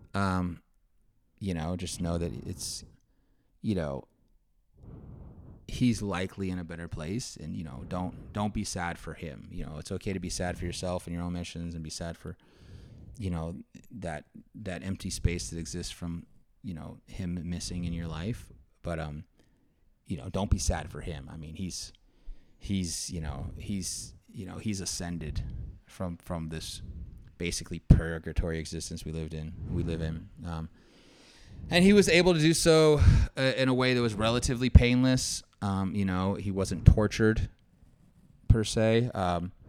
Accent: American